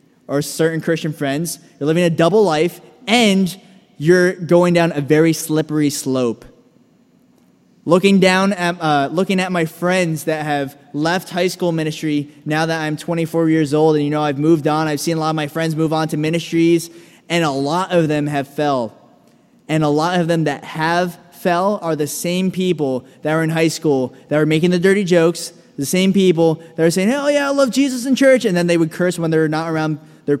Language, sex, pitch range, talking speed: English, male, 150-185 Hz, 210 wpm